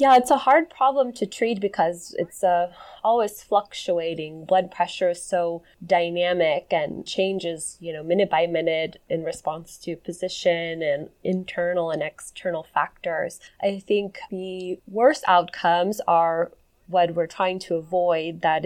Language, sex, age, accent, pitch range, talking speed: English, female, 20-39, American, 165-195 Hz, 145 wpm